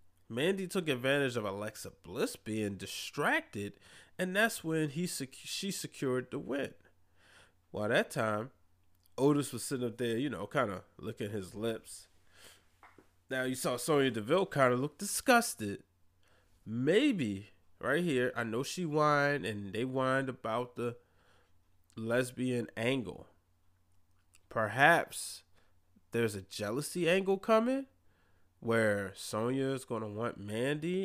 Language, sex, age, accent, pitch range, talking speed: English, male, 20-39, American, 95-140 Hz, 135 wpm